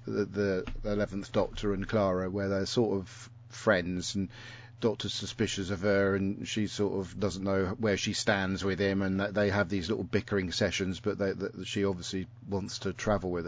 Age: 40-59